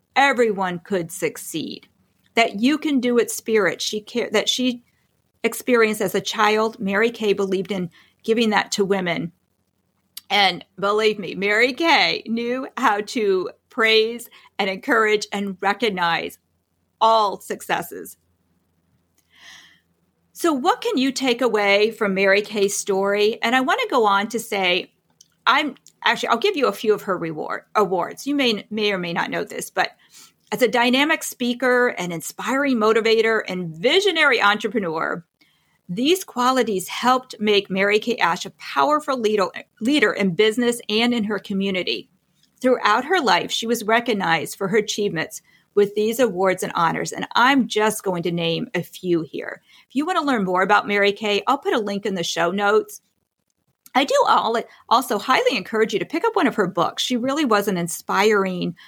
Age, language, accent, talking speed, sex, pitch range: 40-59, English, American, 165 wpm, female, 195-245 Hz